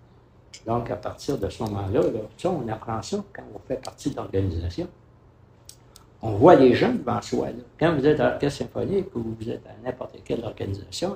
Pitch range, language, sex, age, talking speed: 100-125 Hz, English, male, 60-79, 195 wpm